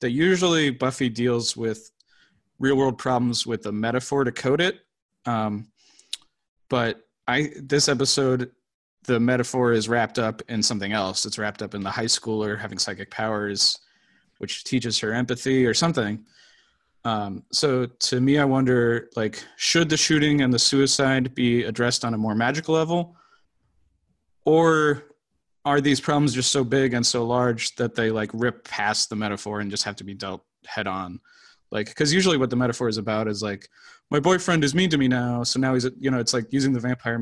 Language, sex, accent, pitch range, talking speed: English, male, American, 110-145 Hz, 185 wpm